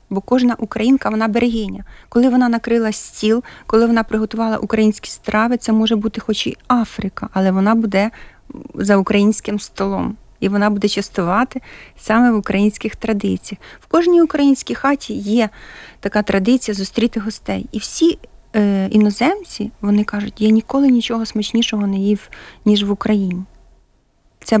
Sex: female